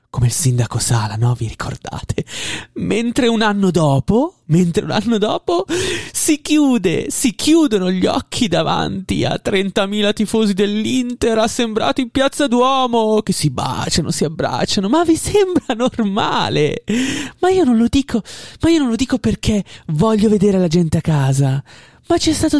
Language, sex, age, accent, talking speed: Italian, male, 30-49, native, 160 wpm